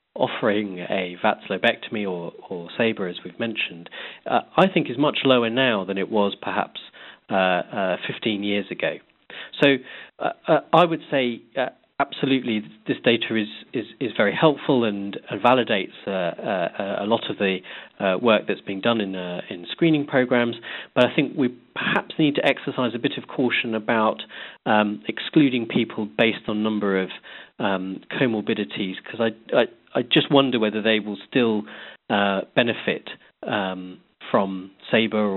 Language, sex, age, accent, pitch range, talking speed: English, male, 40-59, British, 95-120 Hz, 165 wpm